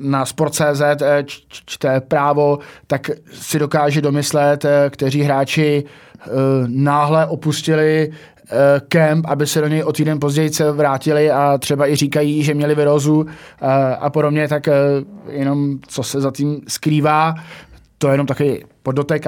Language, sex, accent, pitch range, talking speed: Czech, male, native, 130-150 Hz, 145 wpm